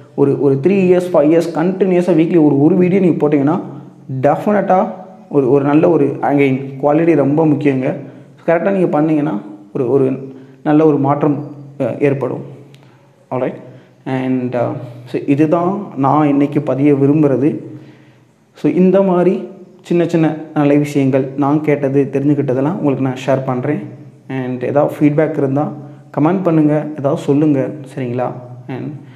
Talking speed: 130 wpm